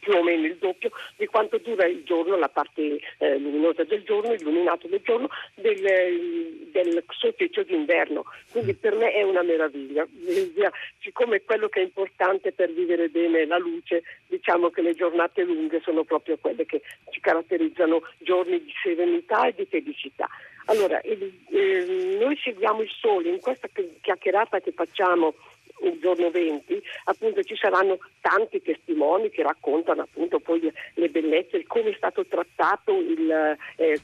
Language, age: Italian, 50-69